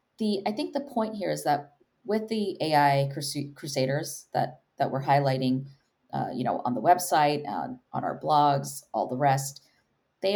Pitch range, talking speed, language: 140-190 Hz, 180 wpm, English